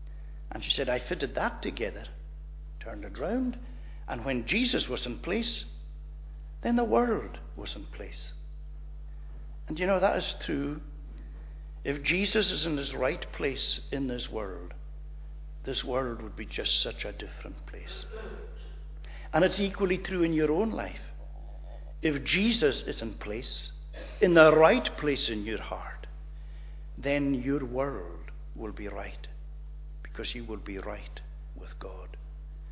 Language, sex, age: English, male, 60-79